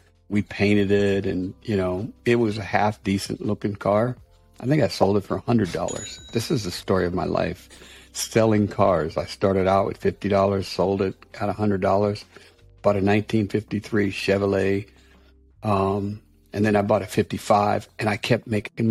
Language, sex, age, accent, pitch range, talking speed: English, male, 60-79, American, 95-115 Hz, 160 wpm